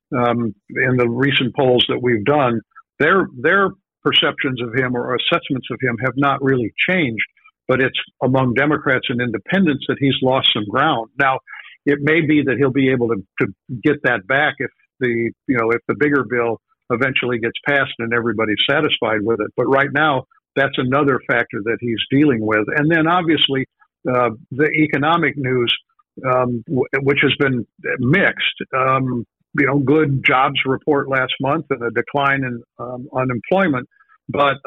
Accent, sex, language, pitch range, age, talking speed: American, male, English, 120-145 Hz, 60-79, 170 wpm